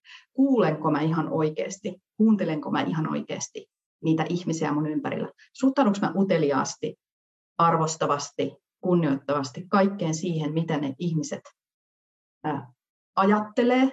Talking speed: 100 wpm